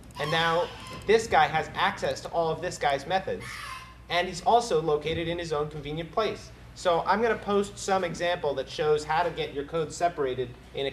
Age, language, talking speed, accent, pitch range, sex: 30-49, English, 210 wpm, American, 150-195 Hz, male